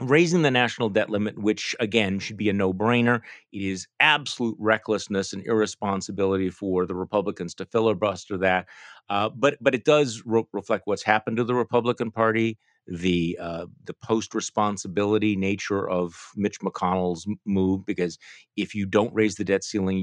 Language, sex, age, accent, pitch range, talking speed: English, male, 40-59, American, 95-120 Hz, 155 wpm